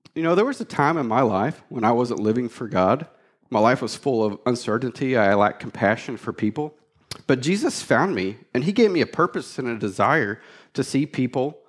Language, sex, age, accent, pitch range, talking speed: English, male, 40-59, American, 115-165 Hz, 215 wpm